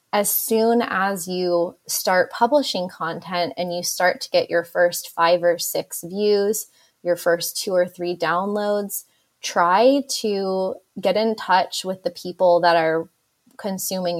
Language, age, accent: English, 20-39, American